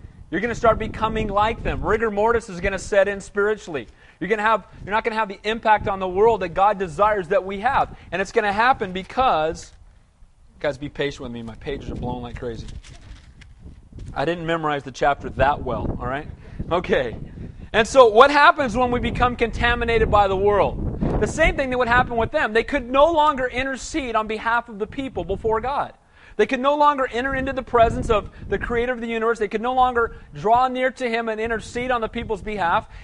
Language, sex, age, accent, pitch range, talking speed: English, male, 40-59, American, 185-245 Hz, 220 wpm